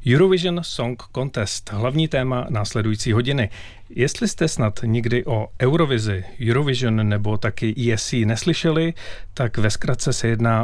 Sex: male